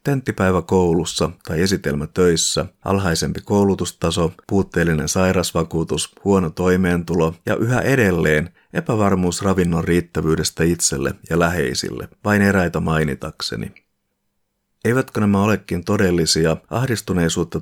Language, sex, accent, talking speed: Finnish, male, native, 95 wpm